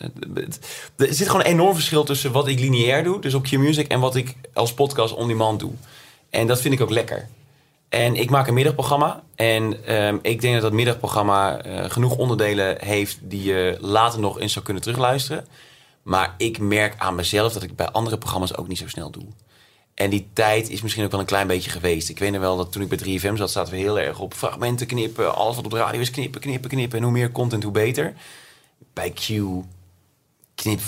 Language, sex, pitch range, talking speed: Dutch, male, 95-125 Hz, 220 wpm